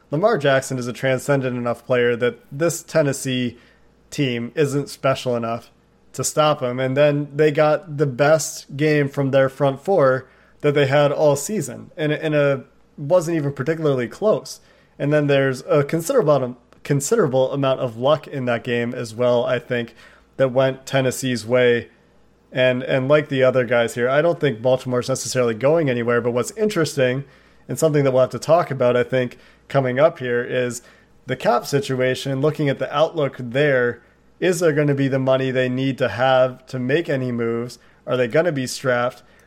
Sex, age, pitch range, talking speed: male, 30-49, 125-150 Hz, 185 wpm